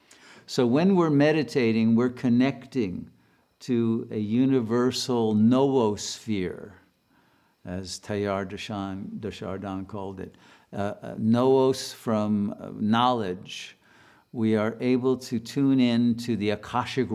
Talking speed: 105 wpm